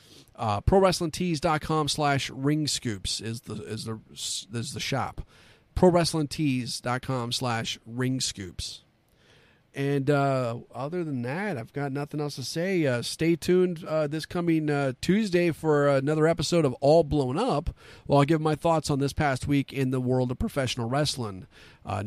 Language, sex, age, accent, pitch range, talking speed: English, male, 40-59, American, 125-155 Hz, 170 wpm